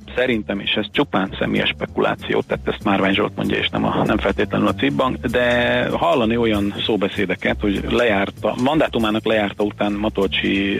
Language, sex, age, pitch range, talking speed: Hungarian, male, 40-59, 95-110 Hz, 155 wpm